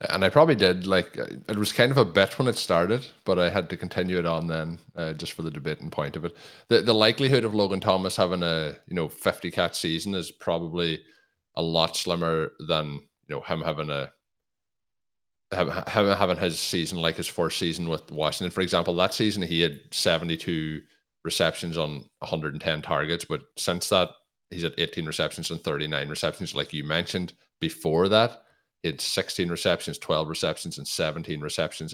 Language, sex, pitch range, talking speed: English, male, 80-95 Hz, 195 wpm